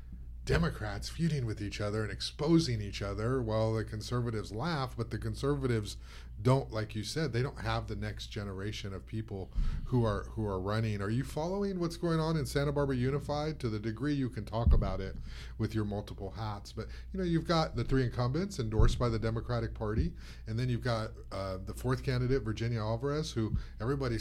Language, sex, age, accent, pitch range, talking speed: English, male, 30-49, American, 100-130 Hz, 200 wpm